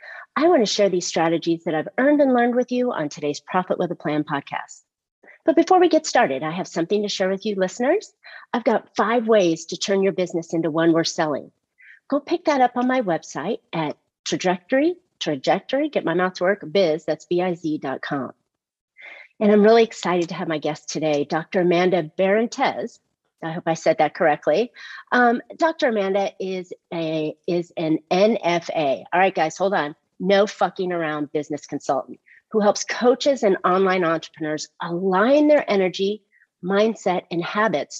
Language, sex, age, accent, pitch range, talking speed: English, female, 40-59, American, 165-225 Hz, 170 wpm